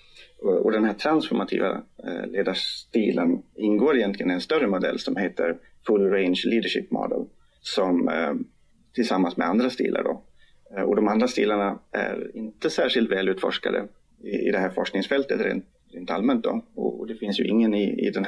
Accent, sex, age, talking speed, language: native, male, 30-49, 150 wpm, Swedish